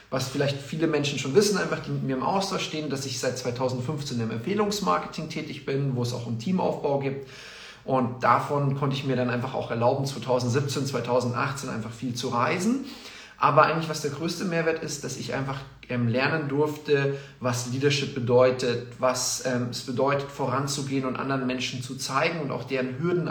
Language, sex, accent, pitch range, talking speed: German, male, German, 130-155 Hz, 185 wpm